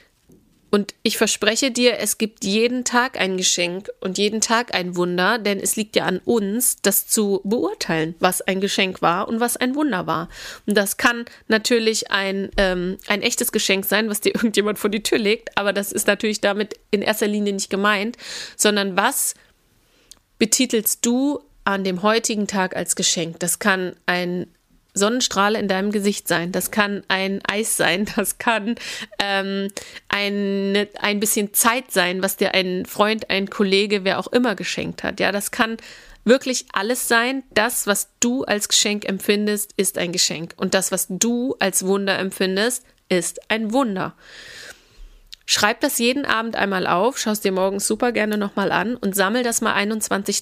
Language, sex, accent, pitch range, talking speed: German, female, German, 195-230 Hz, 175 wpm